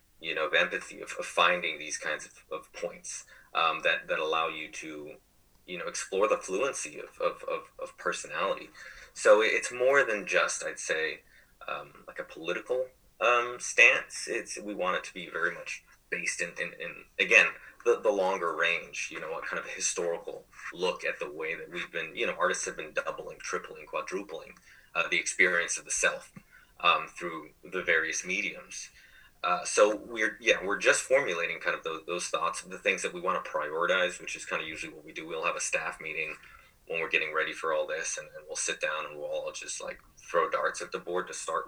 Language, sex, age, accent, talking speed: English, male, 30-49, American, 210 wpm